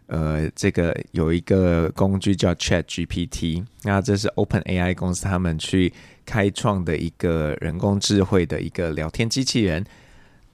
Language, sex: Chinese, male